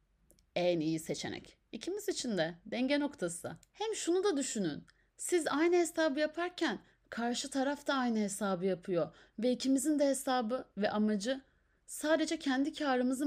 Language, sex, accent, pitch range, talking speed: Turkish, female, native, 190-275 Hz, 140 wpm